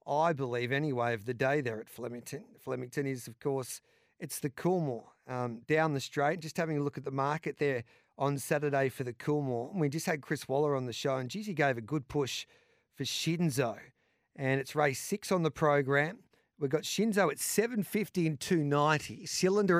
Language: English